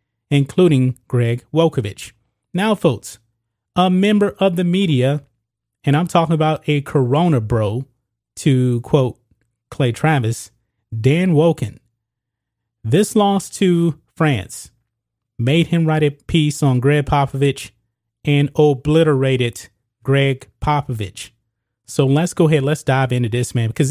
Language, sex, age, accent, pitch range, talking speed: English, male, 30-49, American, 115-160 Hz, 125 wpm